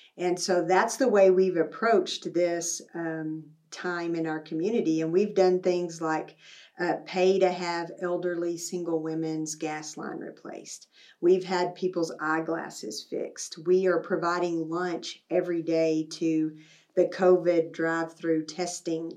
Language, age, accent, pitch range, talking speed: English, 50-69, American, 160-185 Hz, 140 wpm